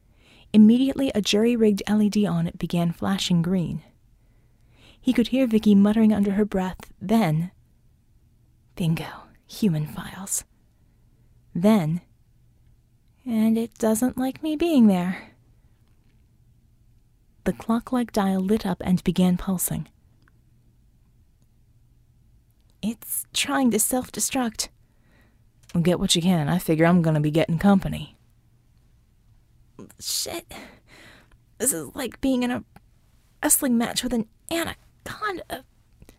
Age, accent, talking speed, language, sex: 20-39, American, 105 wpm, English, female